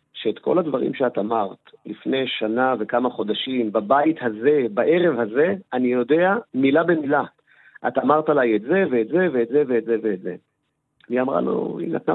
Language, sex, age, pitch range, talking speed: Hebrew, male, 40-59, 110-145 Hz, 175 wpm